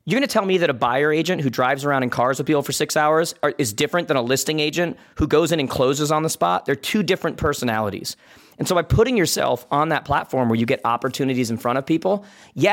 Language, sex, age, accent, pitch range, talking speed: English, male, 40-59, American, 120-155 Hz, 260 wpm